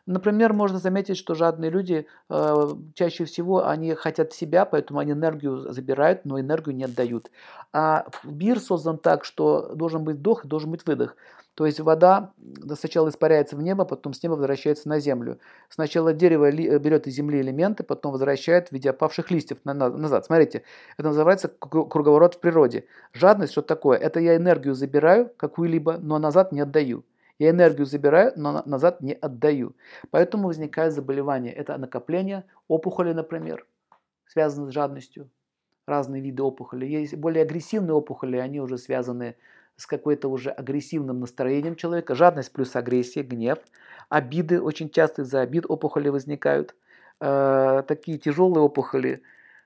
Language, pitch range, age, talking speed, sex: Russian, 135-165 Hz, 50-69, 150 wpm, male